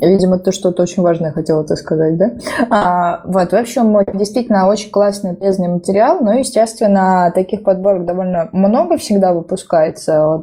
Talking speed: 150 wpm